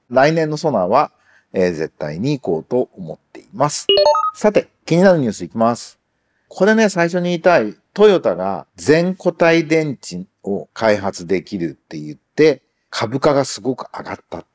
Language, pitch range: Japanese, 120-180 Hz